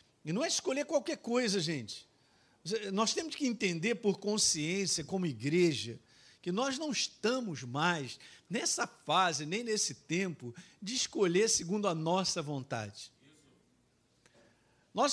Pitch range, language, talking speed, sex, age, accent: 185-270 Hz, Portuguese, 125 wpm, male, 50-69, Brazilian